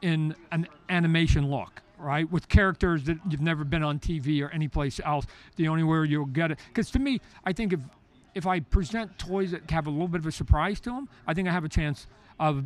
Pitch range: 145-165 Hz